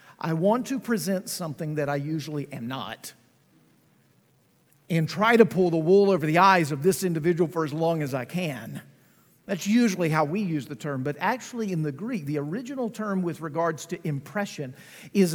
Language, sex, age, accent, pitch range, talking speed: English, male, 50-69, American, 160-215 Hz, 190 wpm